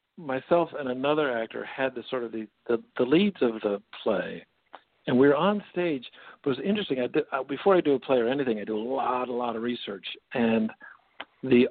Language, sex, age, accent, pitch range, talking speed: English, male, 60-79, American, 115-150 Hz, 215 wpm